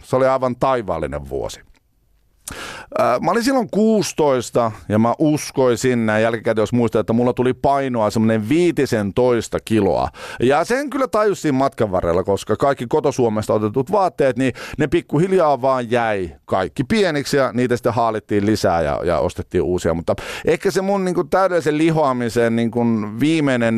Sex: male